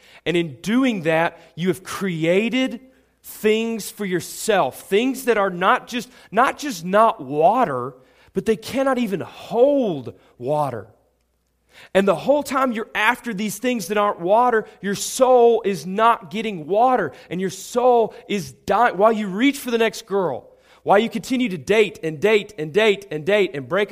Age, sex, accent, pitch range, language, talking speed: 30-49, male, American, 150-220 Hz, English, 170 wpm